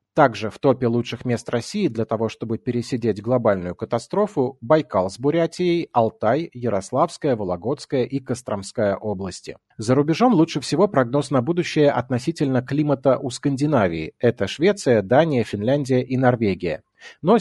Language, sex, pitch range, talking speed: Russian, male, 115-145 Hz, 135 wpm